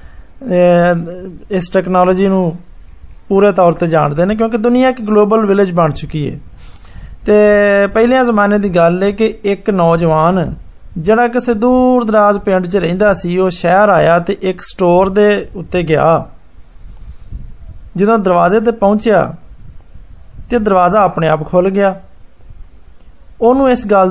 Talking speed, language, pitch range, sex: 120 wpm, Hindi, 170-215 Hz, male